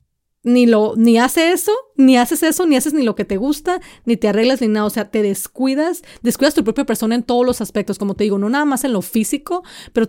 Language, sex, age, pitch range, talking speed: Spanish, female, 30-49, 210-265 Hz, 245 wpm